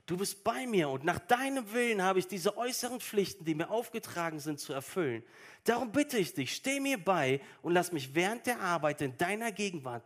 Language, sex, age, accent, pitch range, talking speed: German, male, 40-59, German, 135-215 Hz, 210 wpm